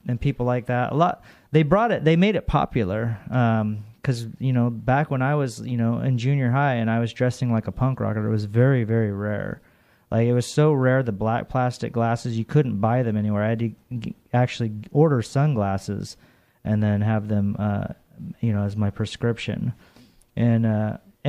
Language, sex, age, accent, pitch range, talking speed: English, male, 30-49, American, 115-130 Hz, 200 wpm